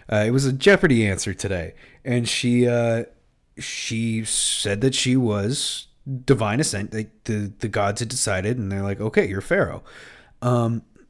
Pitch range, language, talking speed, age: 105-130 Hz, English, 170 wpm, 30-49